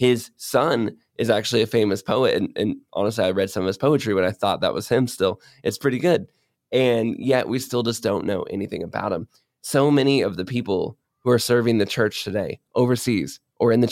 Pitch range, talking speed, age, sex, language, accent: 110-130 Hz, 220 wpm, 20-39, male, English, American